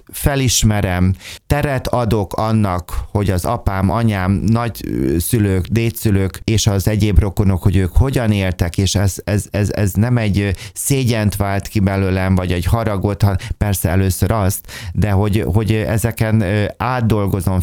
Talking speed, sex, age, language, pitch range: 140 wpm, male, 30-49, Hungarian, 95-115 Hz